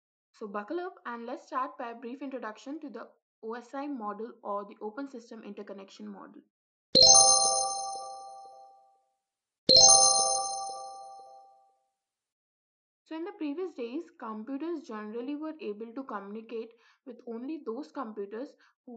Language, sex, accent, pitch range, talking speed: English, female, Indian, 210-285 Hz, 115 wpm